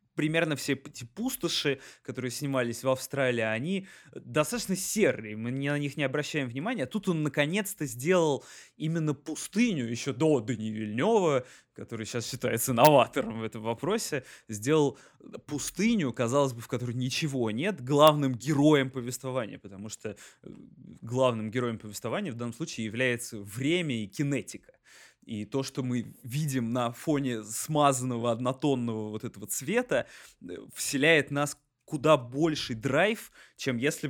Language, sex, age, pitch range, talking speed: Russian, male, 20-39, 120-150 Hz, 135 wpm